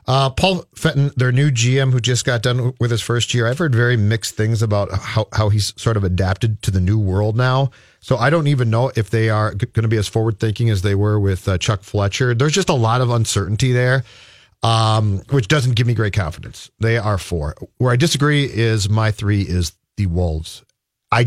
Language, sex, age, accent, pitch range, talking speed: English, male, 40-59, American, 105-130 Hz, 225 wpm